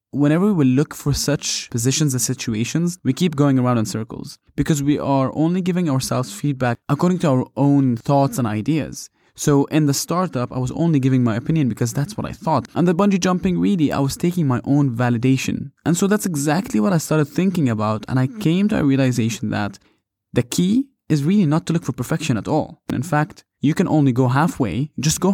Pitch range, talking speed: 125-160 Hz, 215 wpm